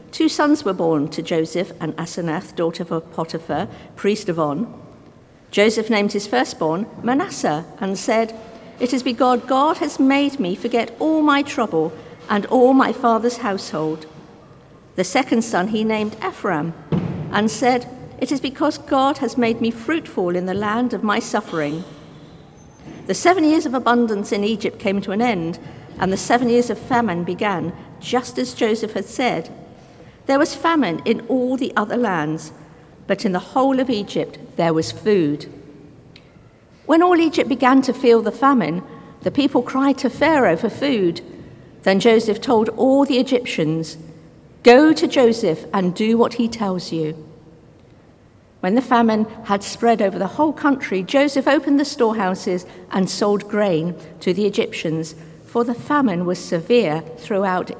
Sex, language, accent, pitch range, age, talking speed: female, English, British, 165-250 Hz, 50-69, 160 wpm